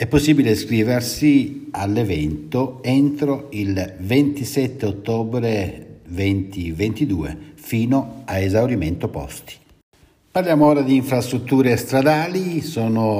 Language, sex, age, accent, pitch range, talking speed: Italian, male, 60-79, native, 95-125 Hz, 85 wpm